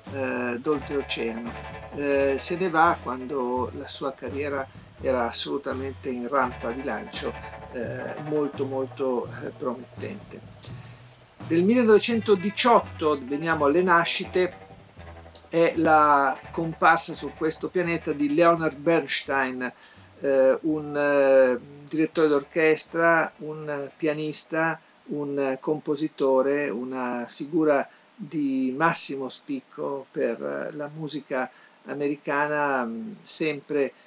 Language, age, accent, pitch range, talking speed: Italian, 50-69, native, 130-160 Hz, 95 wpm